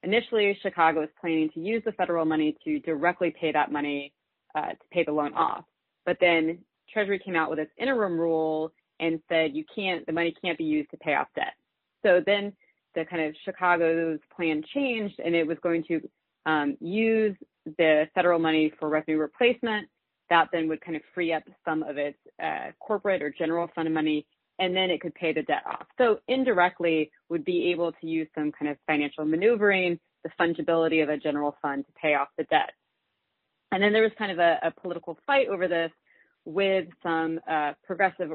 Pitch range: 155-190 Hz